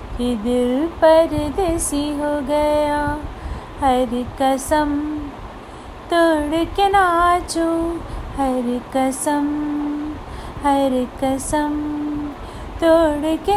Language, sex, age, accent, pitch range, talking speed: Hindi, female, 30-49, native, 295-385 Hz, 70 wpm